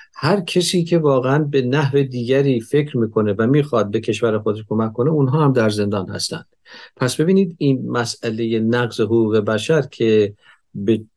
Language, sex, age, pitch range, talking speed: Persian, male, 50-69, 110-145 Hz, 155 wpm